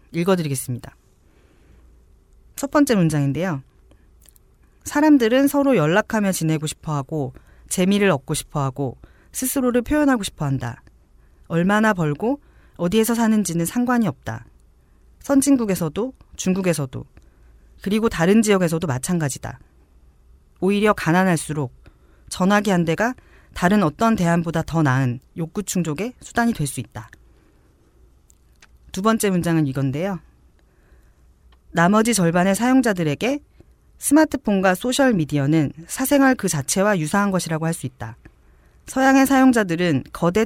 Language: Korean